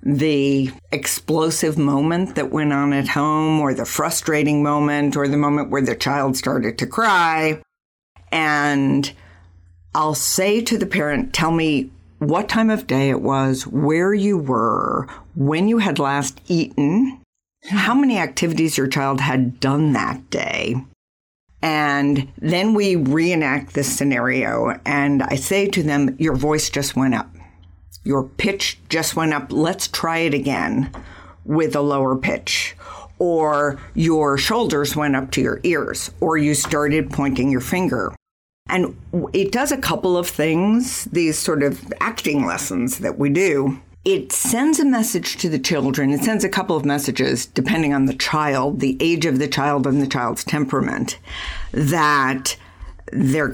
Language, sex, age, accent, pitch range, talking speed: English, female, 50-69, American, 135-165 Hz, 155 wpm